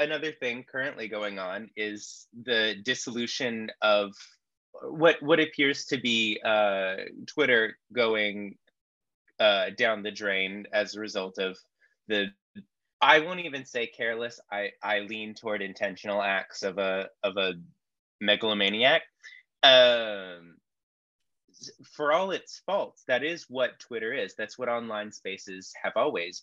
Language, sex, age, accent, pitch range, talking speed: English, male, 20-39, American, 100-130 Hz, 130 wpm